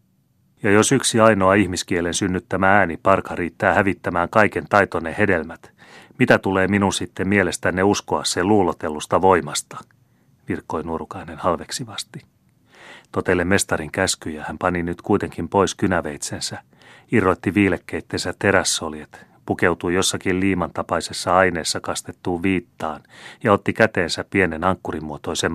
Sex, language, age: male, Finnish, 30-49